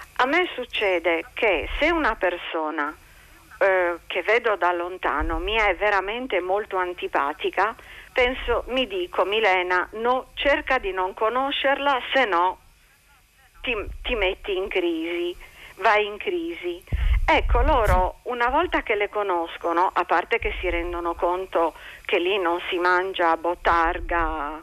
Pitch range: 175-250 Hz